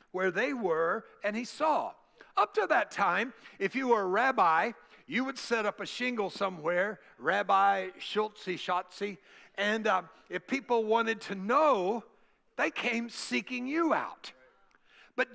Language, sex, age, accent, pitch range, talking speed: English, male, 60-79, American, 215-275 Hz, 150 wpm